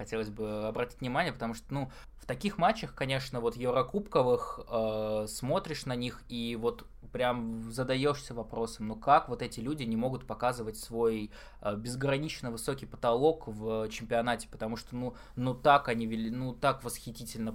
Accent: native